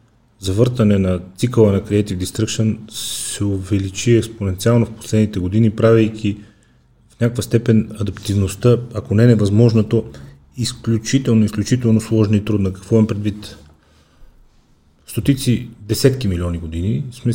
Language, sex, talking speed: Bulgarian, male, 120 wpm